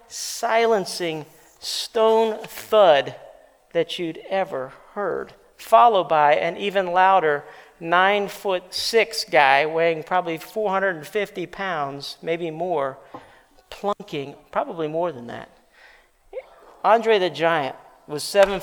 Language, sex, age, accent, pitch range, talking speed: English, male, 40-59, American, 165-225 Hz, 105 wpm